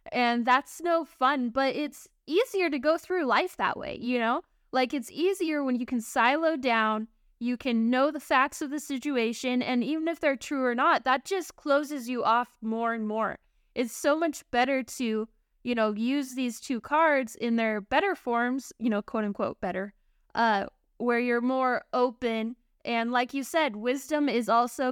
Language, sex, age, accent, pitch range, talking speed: English, female, 10-29, American, 225-270 Hz, 185 wpm